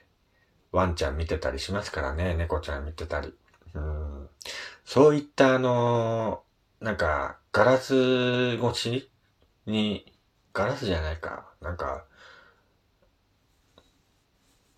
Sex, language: male, Japanese